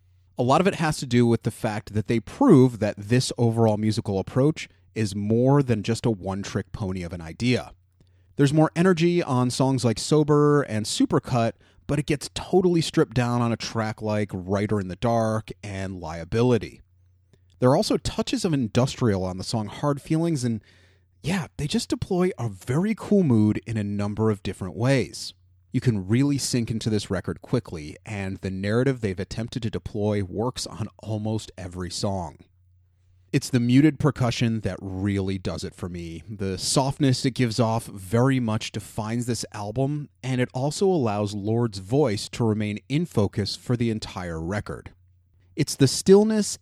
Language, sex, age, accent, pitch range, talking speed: English, male, 30-49, American, 95-130 Hz, 175 wpm